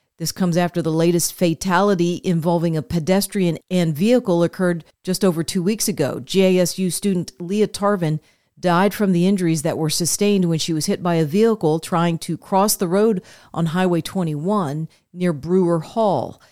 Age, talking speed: 40-59, 165 wpm